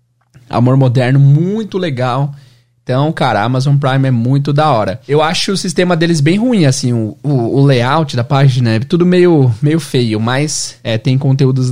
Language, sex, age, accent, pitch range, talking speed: Portuguese, male, 20-39, Brazilian, 125-155 Hz, 185 wpm